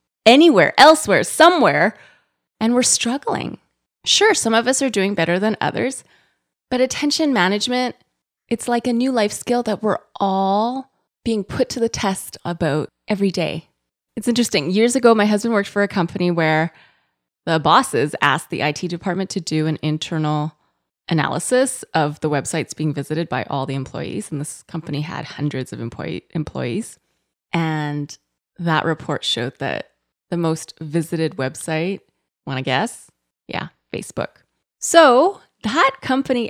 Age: 20-39